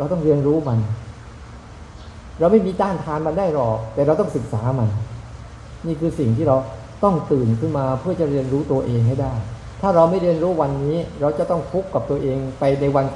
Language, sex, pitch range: Thai, male, 115-155 Hz